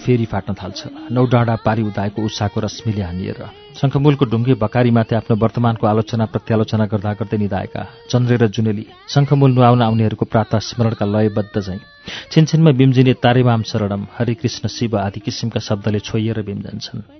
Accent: Indian